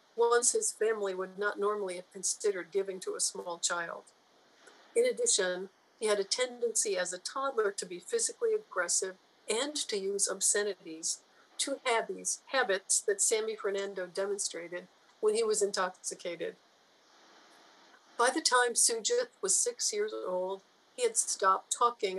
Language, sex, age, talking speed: English, female, 50-69, 140 wpm